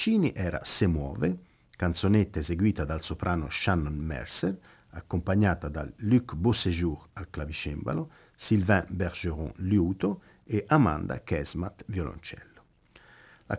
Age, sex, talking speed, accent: 50-69, male, 100 wpm, native